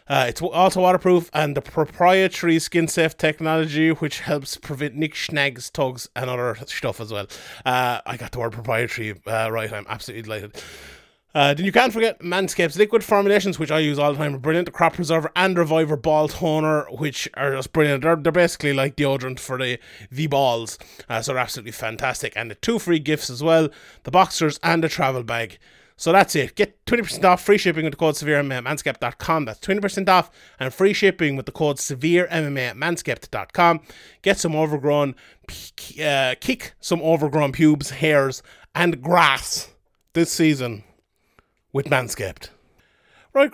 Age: 30-49